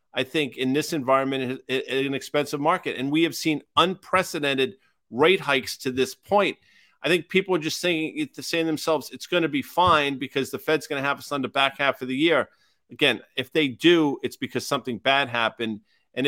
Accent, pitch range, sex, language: American, 130-165 Hz, male, English